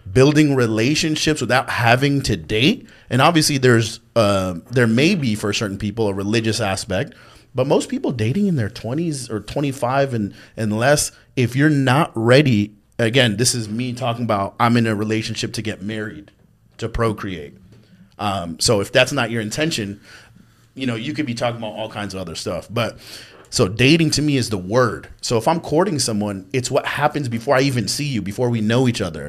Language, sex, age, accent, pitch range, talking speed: English, male, 30-49, American, 105-135 Hz, 195 wpm